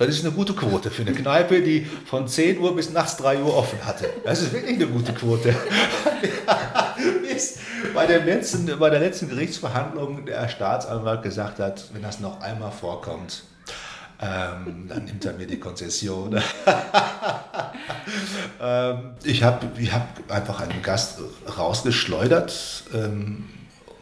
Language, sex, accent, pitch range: German, male, German, 100-135 Hz